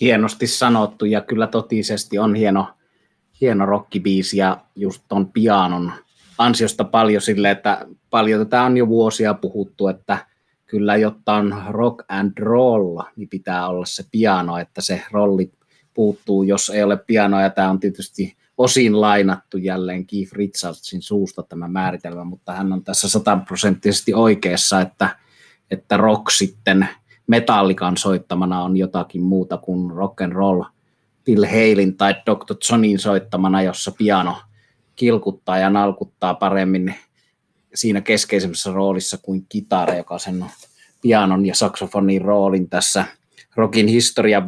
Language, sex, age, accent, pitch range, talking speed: Finnish, male, 30-49, native, 95-110 Hz, 135 wpm